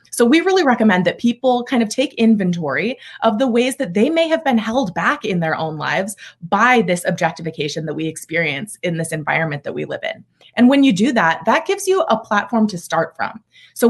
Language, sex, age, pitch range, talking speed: English, female, 20-39, 175-240 Hz, 220 wpm